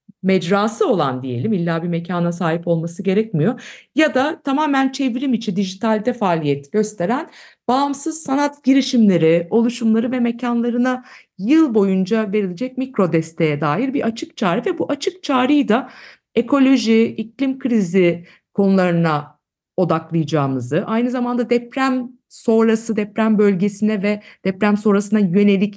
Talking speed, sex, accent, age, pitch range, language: 120 wpm, female, native, 50-69, 185-250 Hz, Turkish